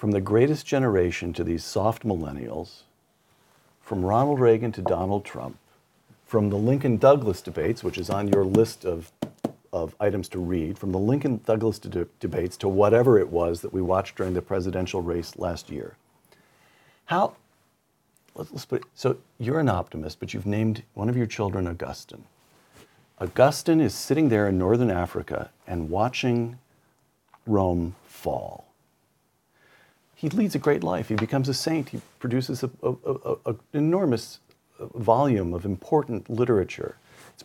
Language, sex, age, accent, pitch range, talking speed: English, male, 50-69, American, 90-120 Hz, 145 wpm